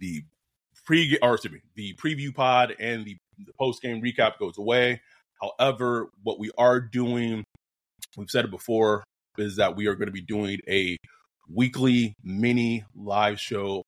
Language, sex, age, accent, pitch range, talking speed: English, male, 30-49, American, 105-125 Hz, 165 wpm